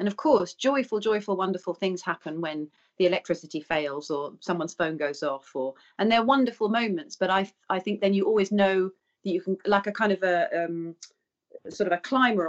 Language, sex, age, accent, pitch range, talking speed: English, female, 40-59, British, 170-215 Hz, 205 wpm